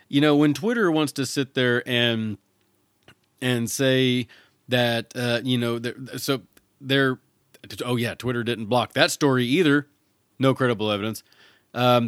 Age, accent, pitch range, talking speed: 30-49, American, 115-145 Hz, 150 wpm